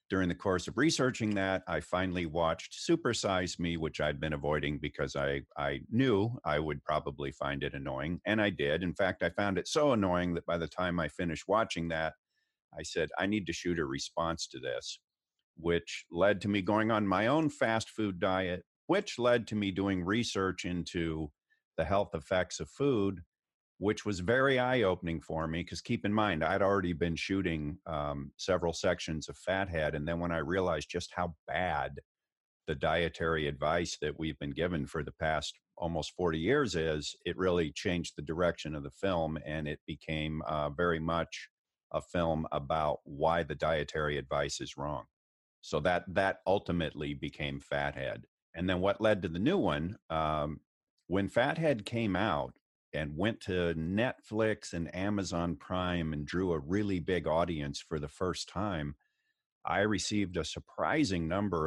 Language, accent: English, American